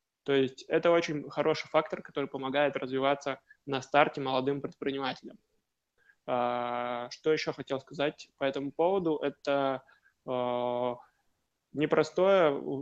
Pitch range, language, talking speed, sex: 130-145 Hz, Russian, 105 wpm, male